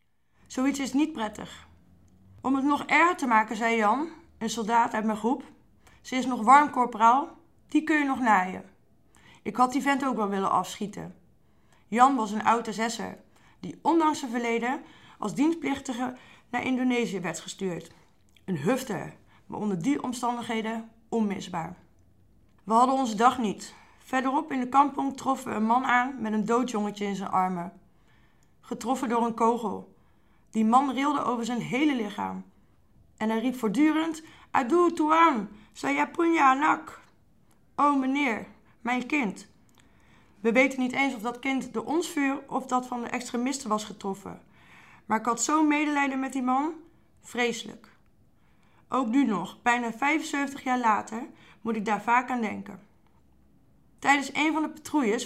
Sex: female